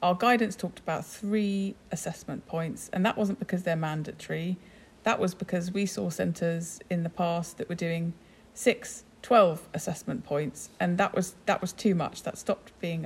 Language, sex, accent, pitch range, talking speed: English, female, British, 165-200 Hz, 180 wpm